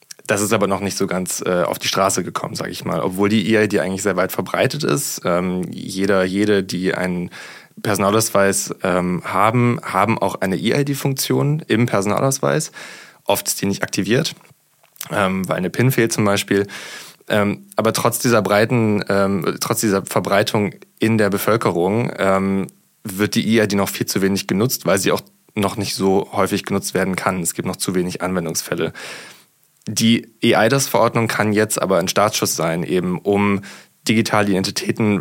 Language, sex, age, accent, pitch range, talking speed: German, male, 20-39, German, 95-115 Hz, 165 wpm